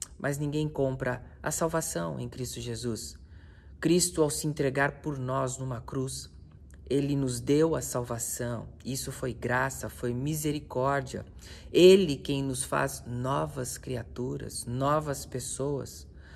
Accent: Brazilian